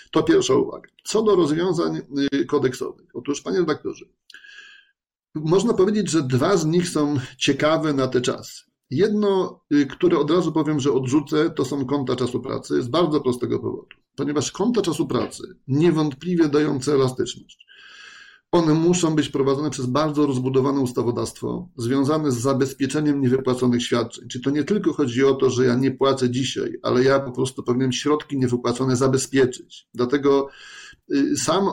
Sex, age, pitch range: male, 30-49, 135-180 Hz